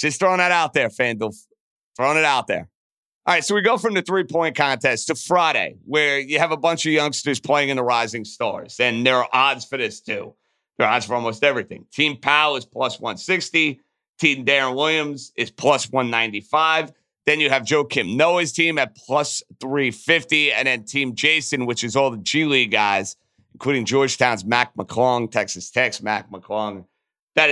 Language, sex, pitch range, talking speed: English, male, 130-165 Hz, 190 wpm